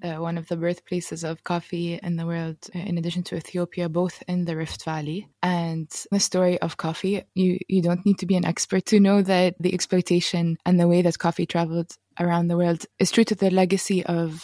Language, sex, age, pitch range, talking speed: English, female, 20-39, 170-190 Hz, 215 wpm